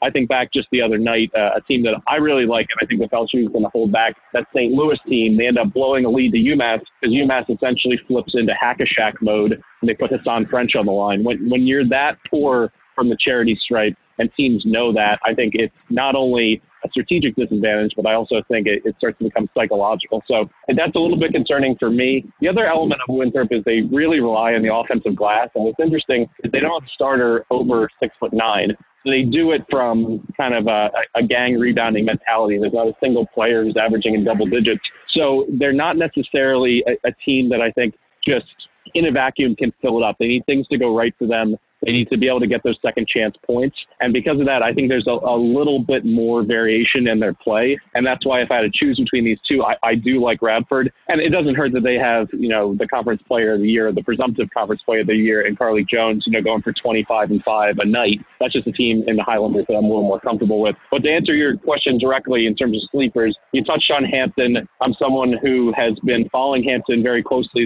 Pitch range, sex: 110-130 Hz, male